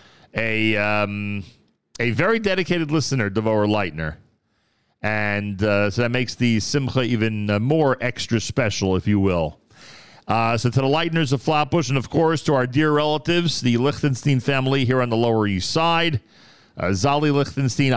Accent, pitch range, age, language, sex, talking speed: American, 110-165 Hz, 40-59, English, male, 165 wpm